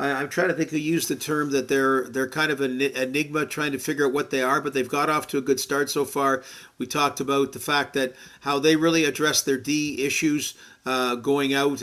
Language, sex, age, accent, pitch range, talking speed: English, male, 40-59, American, 135-150 Hz, 245 wpm